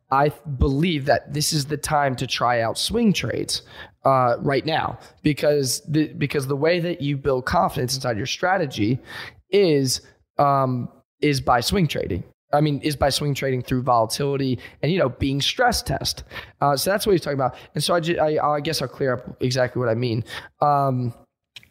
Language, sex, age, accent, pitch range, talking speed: English, male, 20-39, American, 125-155 Hz, 180 wpm